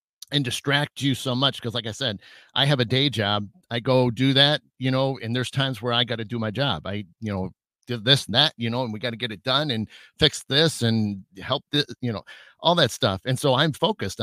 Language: English